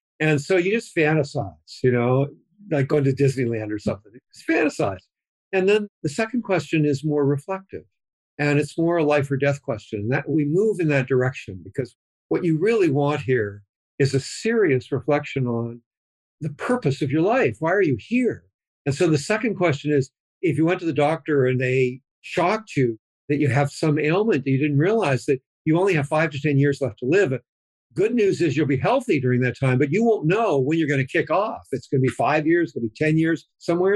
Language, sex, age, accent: English, male, 60-79, American